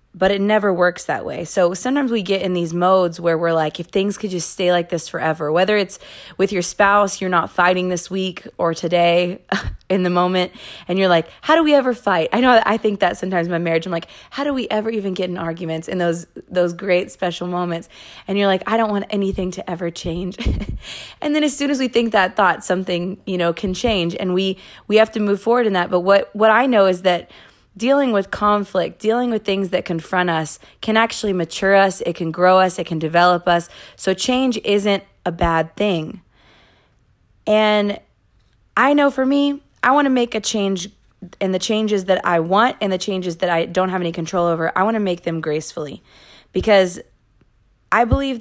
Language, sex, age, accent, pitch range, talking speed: English, female, 20-39, American, 175-215 Hz, 215 wpm